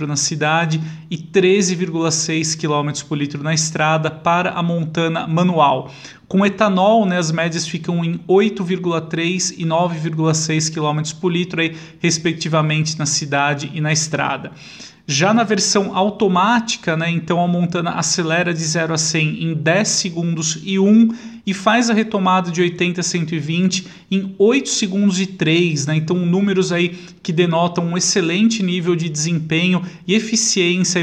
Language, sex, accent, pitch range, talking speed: Portuguese, male, Brazilian, 160-185 Hz, 145 wpm